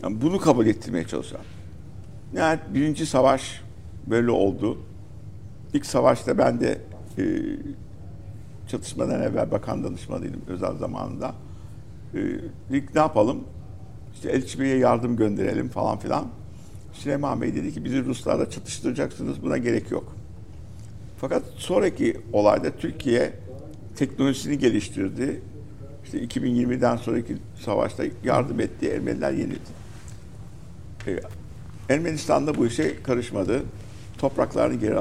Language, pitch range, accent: Turkish, 100-130 Hz, native